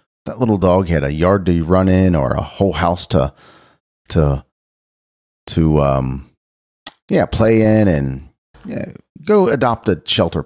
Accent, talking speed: American, 150 wpm